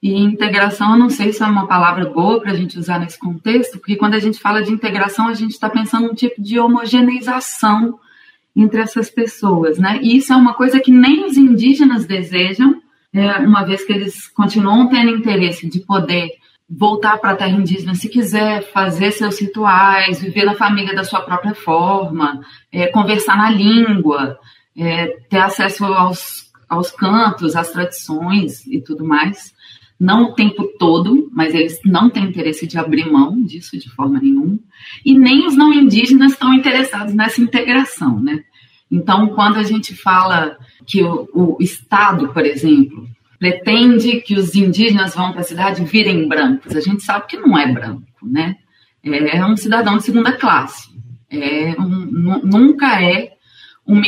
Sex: female